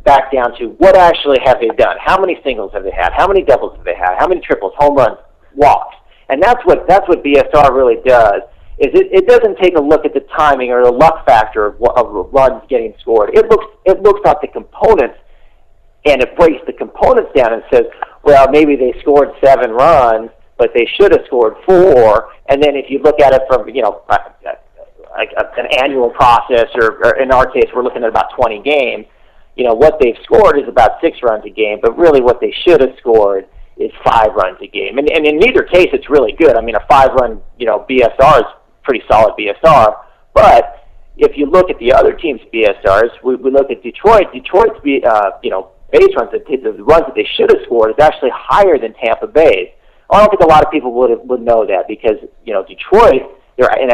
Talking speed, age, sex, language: 225 wpm, 50-69, male, English